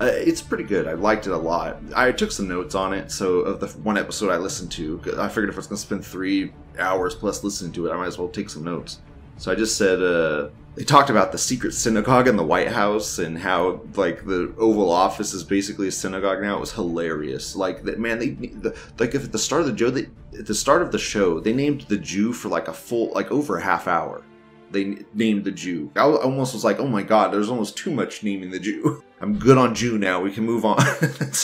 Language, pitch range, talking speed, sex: English, 95-110 Hz, 260 wpm, male